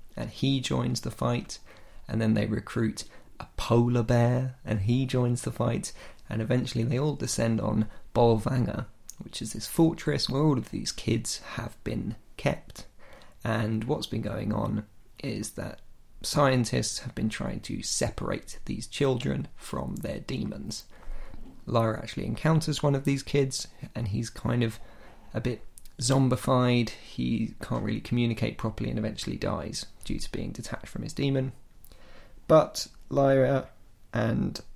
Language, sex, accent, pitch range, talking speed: English, male, British, 110-130 Hz, 150 wpm